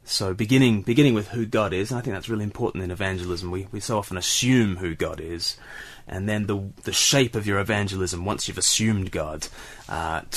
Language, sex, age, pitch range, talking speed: English, male, 30-49, 95-120 Hz, 210 wpm